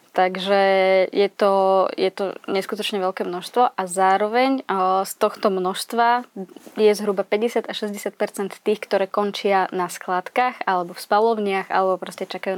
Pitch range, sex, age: 190-215 Hz, female, 20-39